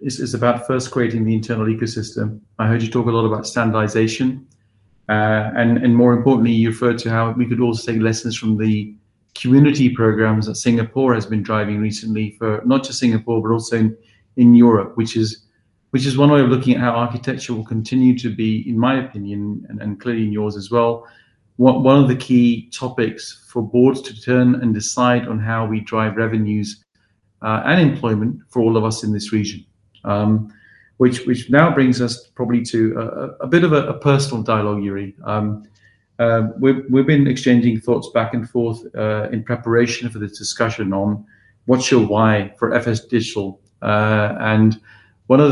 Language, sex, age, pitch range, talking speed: English, male, 40-59, 110-120 Hz, 185 wpm